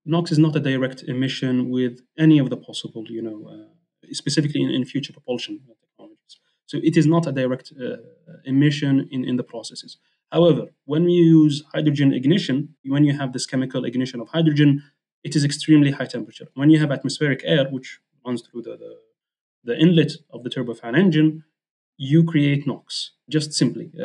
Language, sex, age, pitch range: English, male, 30-49, 125-155 Hz